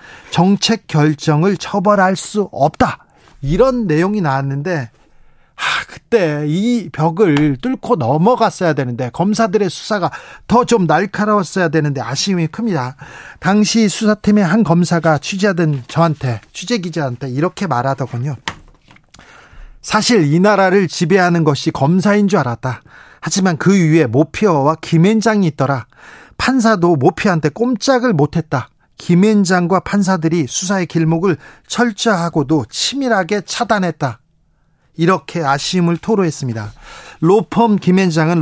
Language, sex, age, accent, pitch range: Korean, male, 40-59, native, 150-205 Hz